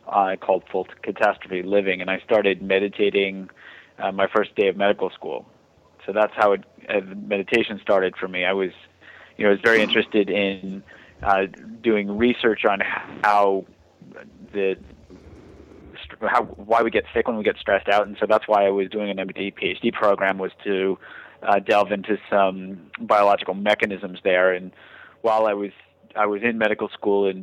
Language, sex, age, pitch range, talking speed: English, male, 30-49, 95-105 Hz, 175 wpm